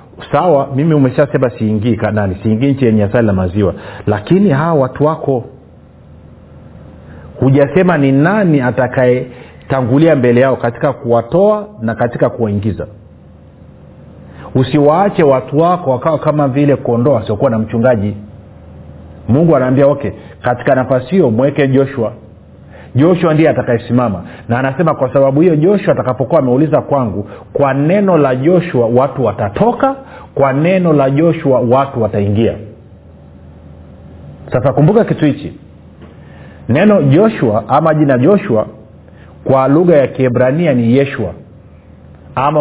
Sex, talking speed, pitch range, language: male, 115 wpm, 100-145 Hz, Swahili